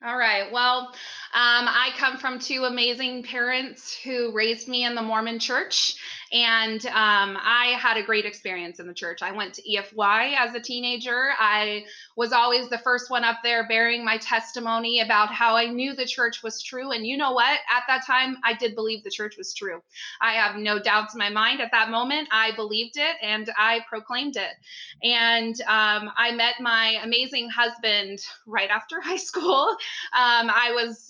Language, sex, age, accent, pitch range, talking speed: English, female, 20-39, American, 220-255 Hz, 190 wpm